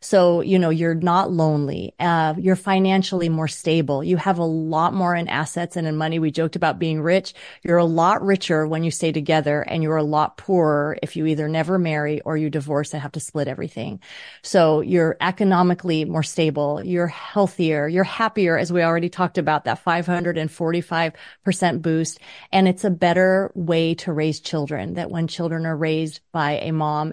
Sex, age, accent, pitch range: female, 30-49, American, 160-190 Hz